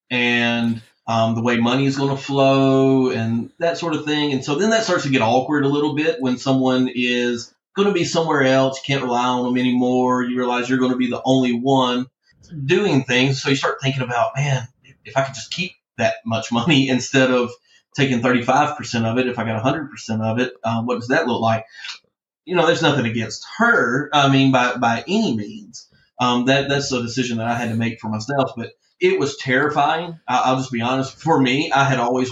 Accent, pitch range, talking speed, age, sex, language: American, 120-140 Hz, 225 wpm, 30-49, male, English